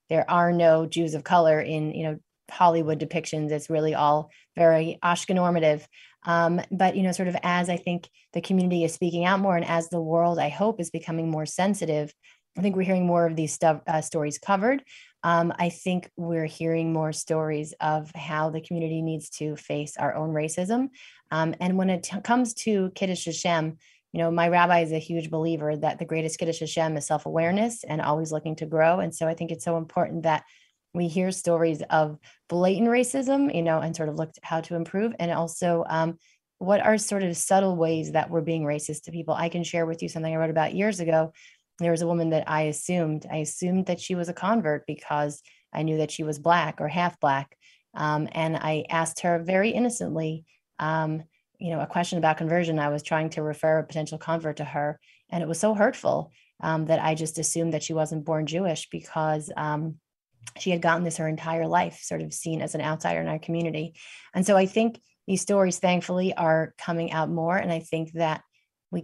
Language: English